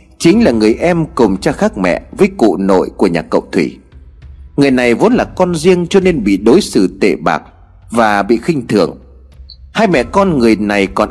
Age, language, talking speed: 30-49, Vietnamese, 205 wpm